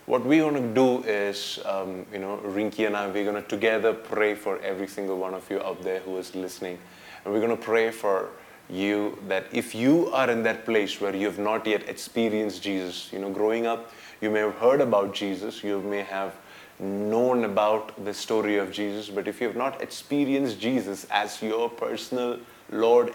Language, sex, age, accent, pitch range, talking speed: English, male, 20-39, Indian, 100-110 Hz, 205 wpm